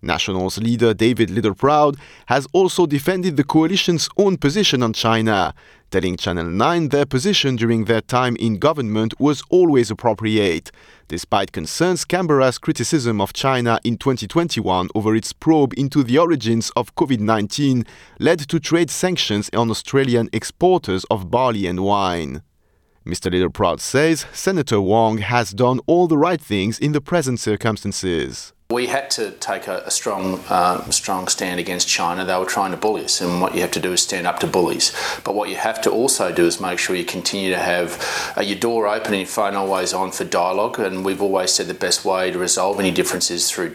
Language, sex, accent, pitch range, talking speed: English, male, French, 95-145 Hz, 185 wpm